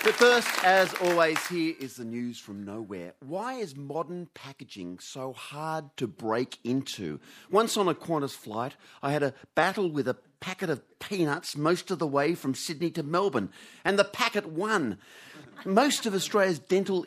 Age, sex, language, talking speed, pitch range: 40-59, male, English, 170 wpm, 120-175 Hz